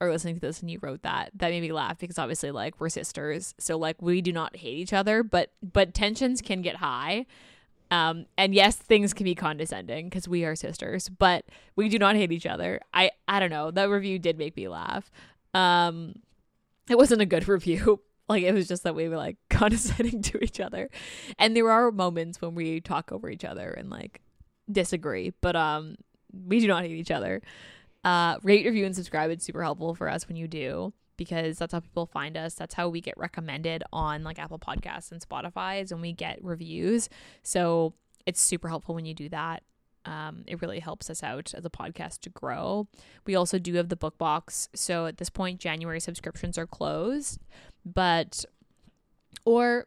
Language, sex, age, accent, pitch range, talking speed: English, female, 10-29, American, 165-195 Hz, 200 wpm